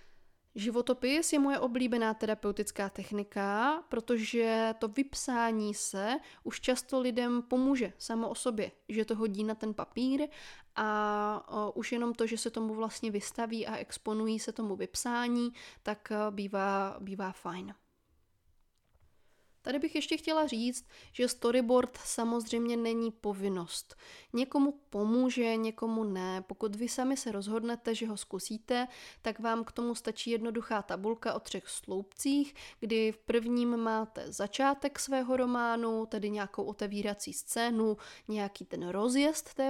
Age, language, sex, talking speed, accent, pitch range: 20-39, Czech, female, 135 wpm, native, 215-250 Hz